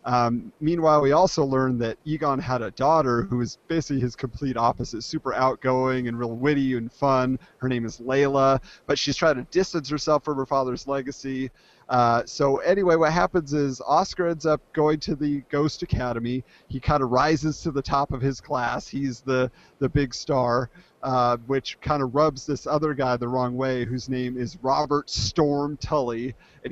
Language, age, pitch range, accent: English, 40-59, 125-150 Hz, American